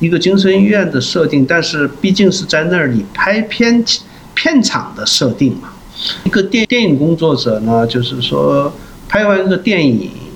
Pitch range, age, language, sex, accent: 125-180 Hz, 50-69, Chinese, male, native